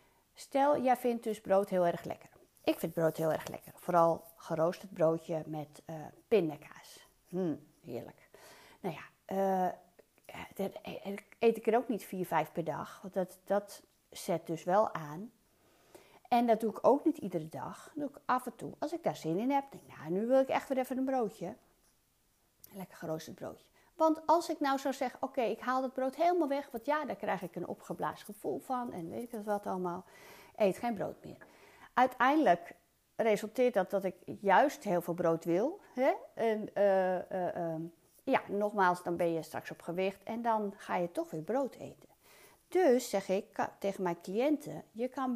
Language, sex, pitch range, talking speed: Dutch, female, 175-255 Hz, 195 wpm